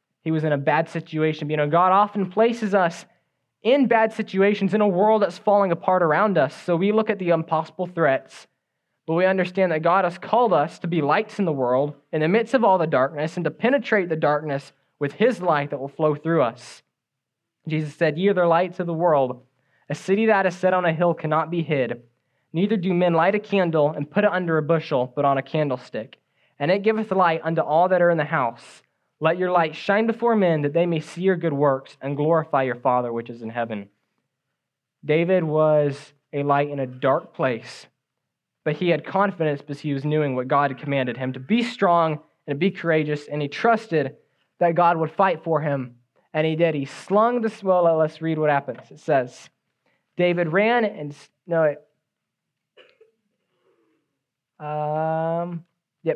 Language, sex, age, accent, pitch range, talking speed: English, male, 20-39, American, 145-185 Hz, 200 wpm